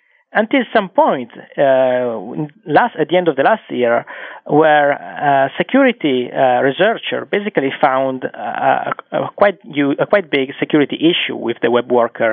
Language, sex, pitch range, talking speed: English, male, 130-180 Hz, 155 wpm